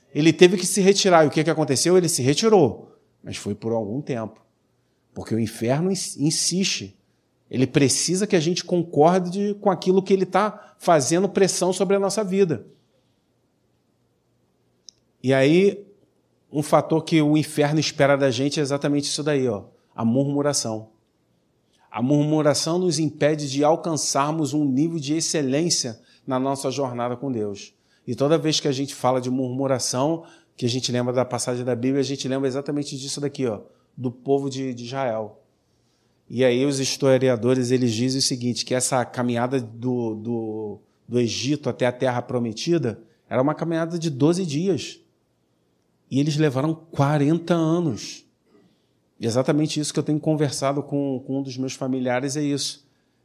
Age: 40-59